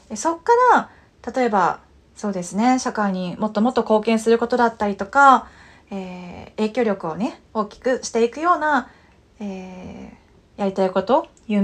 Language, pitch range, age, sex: Japanese, 205-270 Hz, 30-49, female